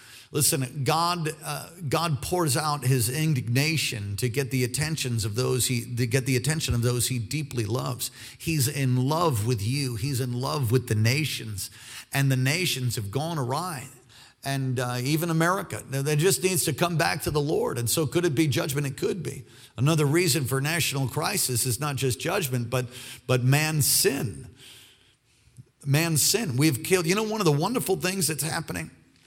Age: 50-69